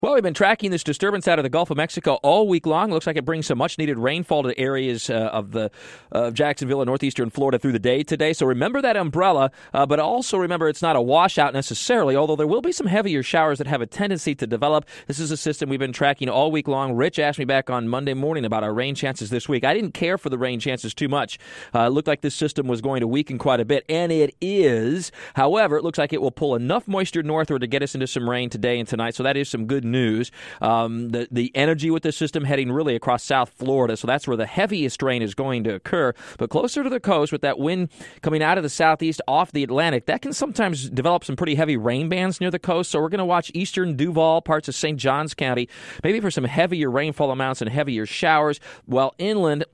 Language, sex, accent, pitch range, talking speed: English, male, American, 130-160 Hz, 255 wpm